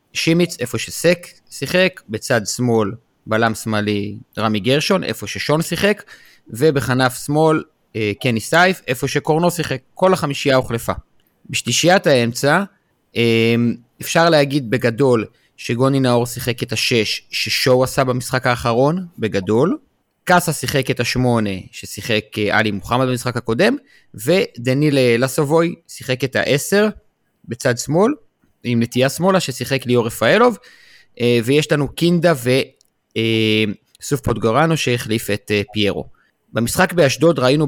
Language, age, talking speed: Hebrew, 30-49, 115 wpm